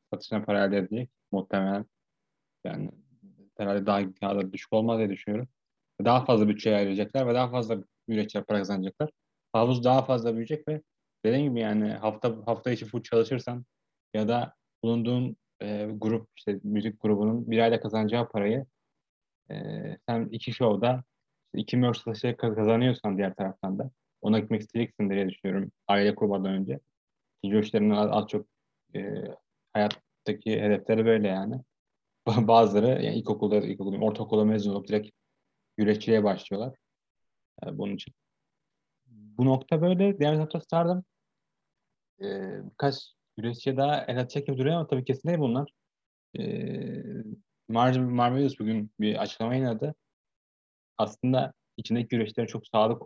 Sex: male